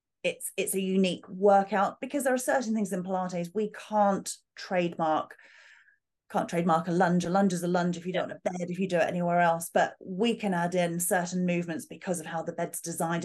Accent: British